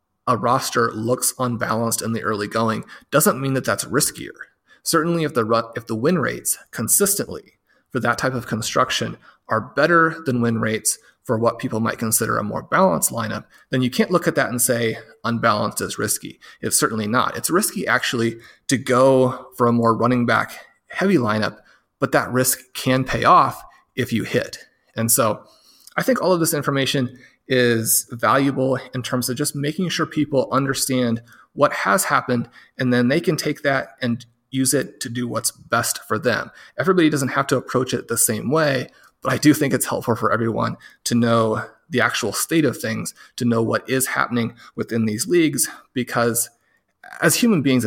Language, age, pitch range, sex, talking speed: English, 30-49, 115-135 Hz, male, 185 wpm